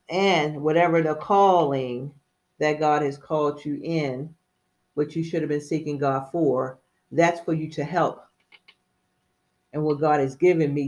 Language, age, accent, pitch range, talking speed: English, 40-59, American, 145-165 Hz, 160 wpm